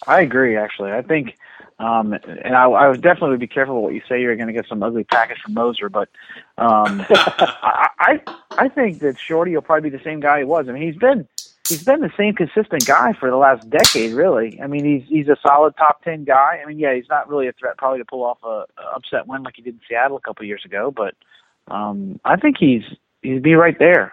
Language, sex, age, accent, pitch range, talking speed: English, male, 40-59, American, 120-150 Hz, 245 wpm